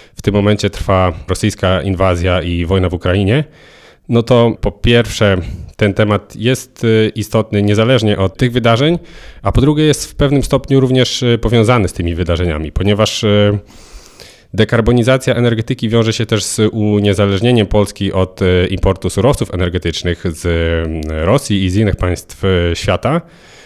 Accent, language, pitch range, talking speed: native, Polish, 95-120 Hz, 135 wpm